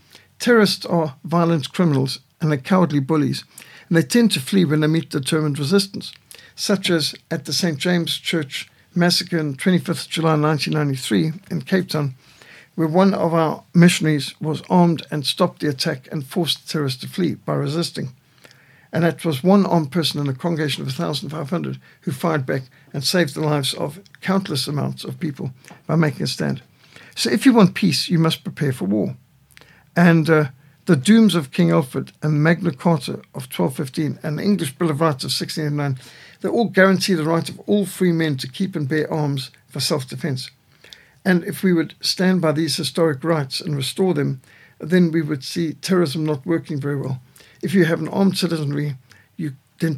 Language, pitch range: English, 145-175 Hz